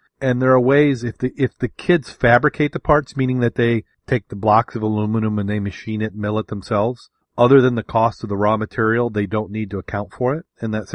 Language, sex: English, male